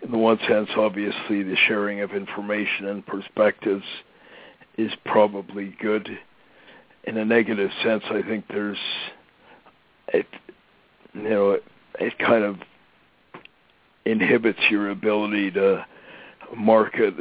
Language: English